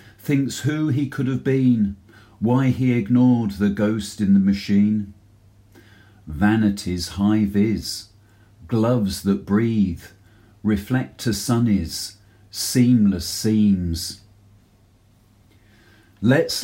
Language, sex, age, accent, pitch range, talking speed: English, male, 40-59, British, 100-115 Hz, 95 wpm